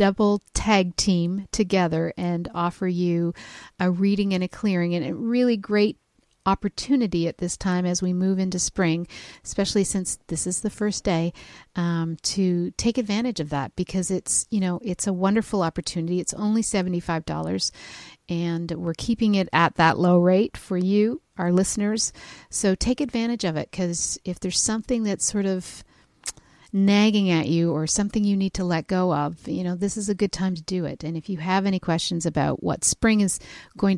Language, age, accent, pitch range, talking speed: English, 50-69, American, 170-200 Hz, 185 wpm